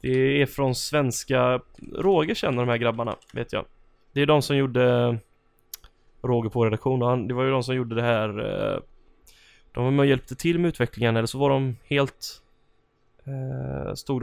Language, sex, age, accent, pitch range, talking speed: Swedish, male, 10-29, native, 115-130 Hz, 175 wpm